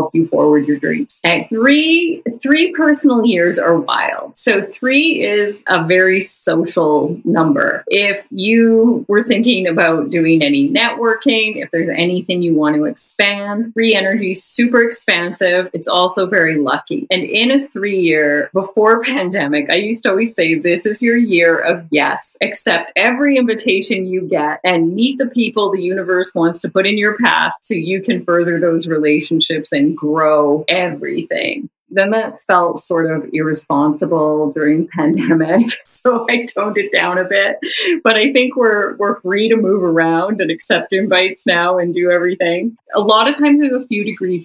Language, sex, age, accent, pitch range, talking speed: English, female, 30-49, American, 165-220 Hz, 165 wpm